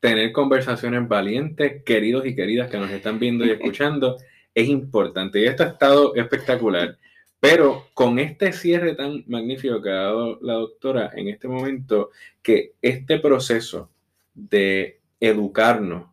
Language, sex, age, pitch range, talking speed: Spanish, male, 20-39, 110-140 Hz, 140 wpm